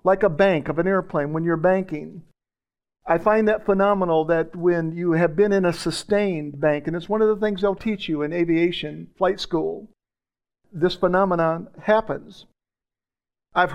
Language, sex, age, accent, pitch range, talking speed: English, male, 50-69, American, 160-210 Hz, 170 wpm